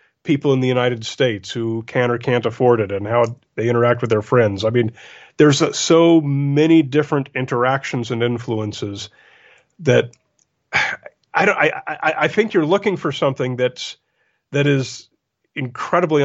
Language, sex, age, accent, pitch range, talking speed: English, male, 40-59, American, 120-145 Hz, 155 wpm